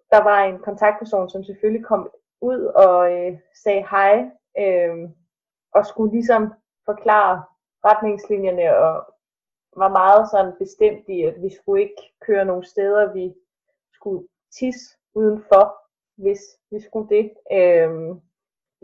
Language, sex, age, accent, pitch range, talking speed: Danish, female, 20-39, native, 185-220 Hz, 125 wpm